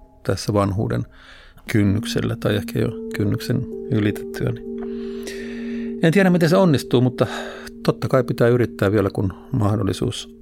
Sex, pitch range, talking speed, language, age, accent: male, 100-130 Hz, 120 wpm, Finnish, 50-69, native